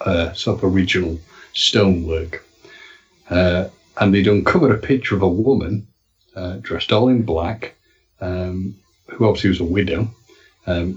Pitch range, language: 90-105 Hz, English